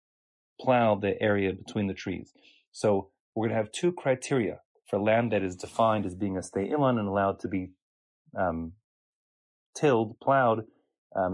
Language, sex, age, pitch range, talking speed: English, male, 30-49, 95-130 Hz, 165 wpm